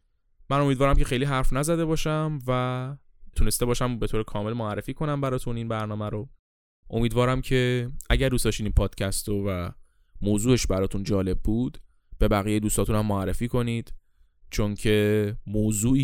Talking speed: 150 wpm